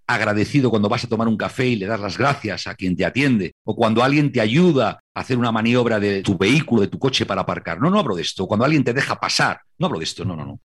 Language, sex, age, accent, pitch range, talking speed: Spanish, male, 50-69, Spanish, 100-145 Hz, 280 wpm